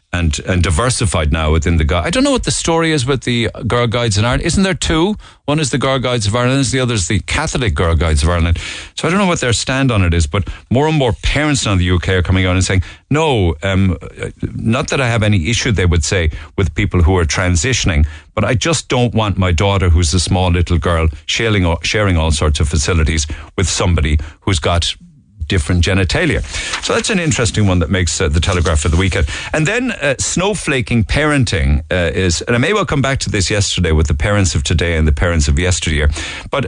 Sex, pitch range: male, 85-125 Hz